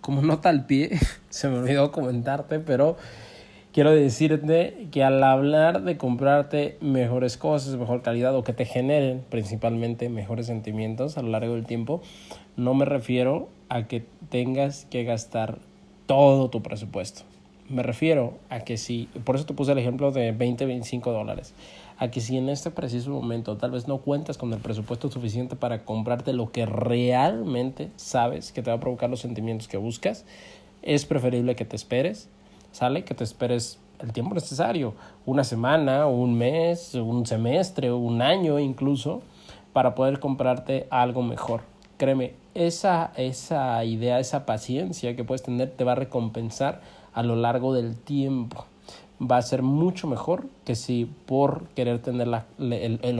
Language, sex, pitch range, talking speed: Spanish, male, 115-140 Hz, 165 wpm